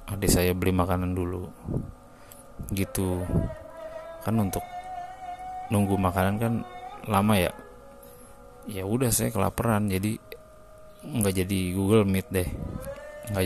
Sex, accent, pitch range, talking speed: male, native, 90-110 Hz, 105 wpm